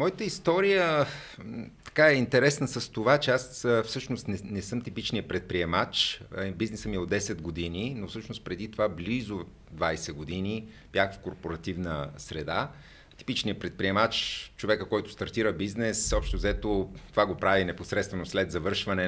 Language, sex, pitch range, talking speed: Bulgarian, male, 95-125 Hz, 145 wpm